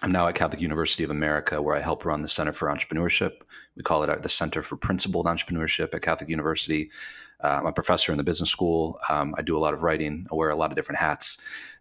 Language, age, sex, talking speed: English, 30-49, male, 245 wpm